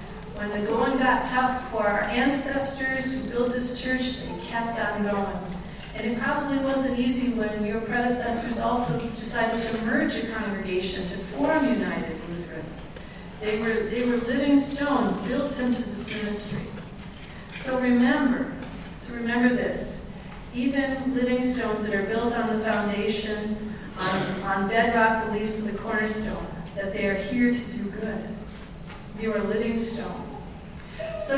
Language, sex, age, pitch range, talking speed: English, female, 40-59, 210-250 Hz, 145 wpm